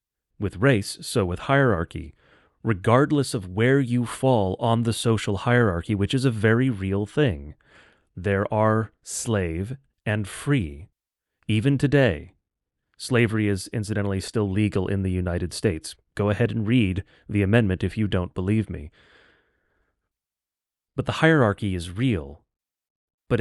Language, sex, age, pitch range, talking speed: English, male, 30-49, 95-120 Hz, 135 wpm